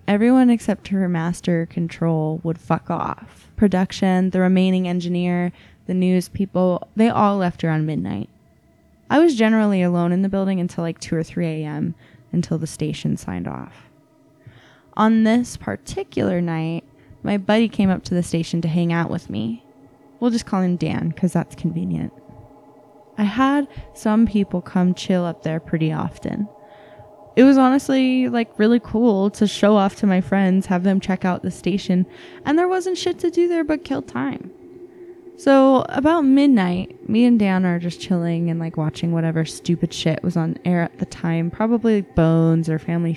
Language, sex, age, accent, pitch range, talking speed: English, female, 10-29, American, 170-220 Hz, 175 wpm